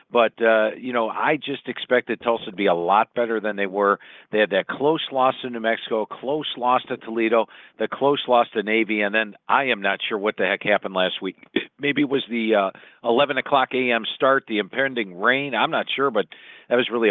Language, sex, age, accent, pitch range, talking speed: English, male, 50-69, American, 110-135 Hz, 225 wpm